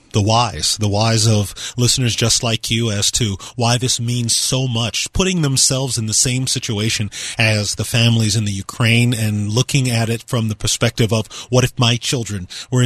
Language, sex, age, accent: English, male, 30-49, American